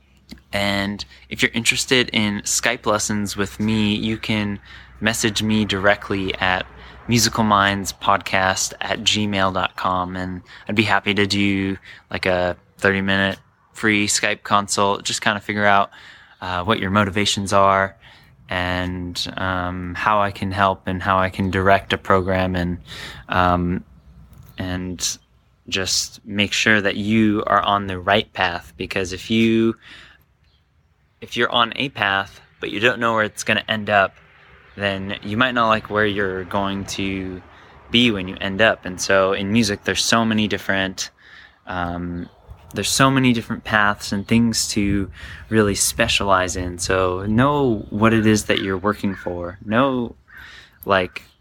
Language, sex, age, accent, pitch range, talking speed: English, male, 20-39, American, 95-110 Hz, 150 wpm